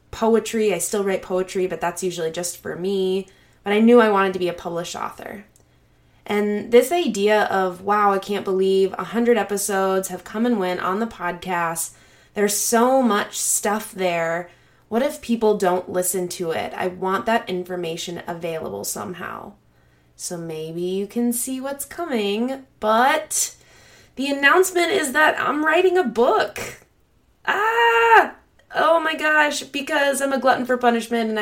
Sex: female